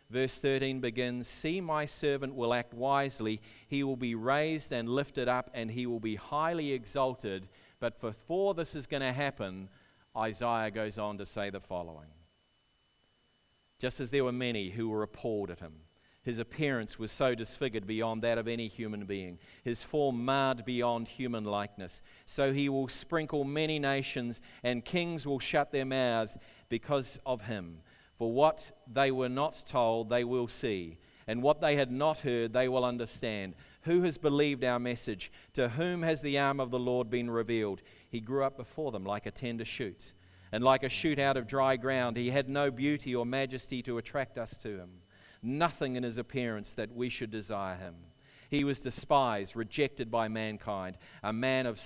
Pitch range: 110-135 Hz